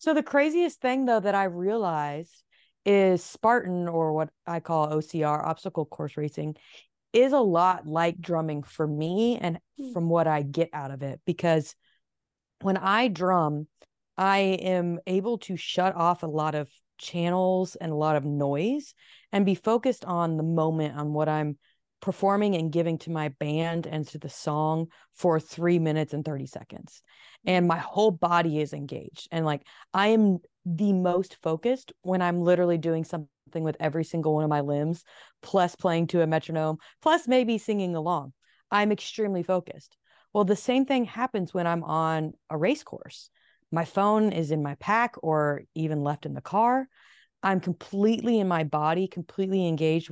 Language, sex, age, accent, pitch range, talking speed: English, female, 30-49, American, 155-190 Hz, 170 wpm